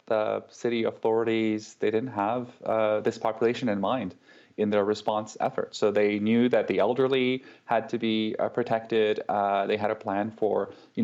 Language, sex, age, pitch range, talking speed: English, male, 20-39, 105-115 Hz, 180 wpm